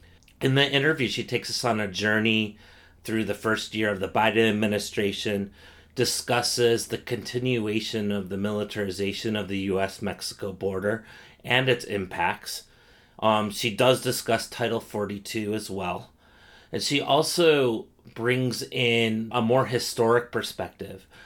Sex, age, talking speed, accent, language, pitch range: male, 30-49, 135 wpm, American, English, 100-120 Hz